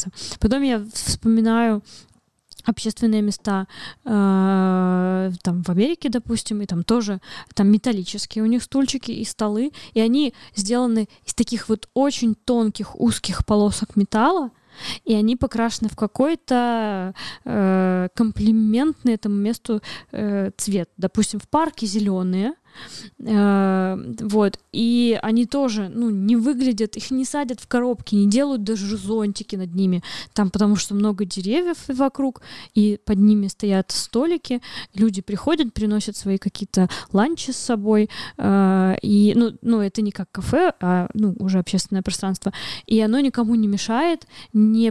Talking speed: 130 wpm